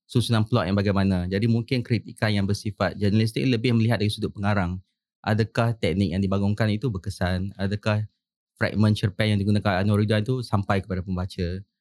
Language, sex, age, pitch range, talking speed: English, male, 20-39, 95-115 Hz, 160 wpm